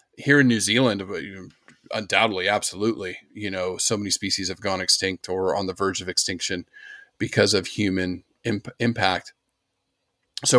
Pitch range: 105-140 Hz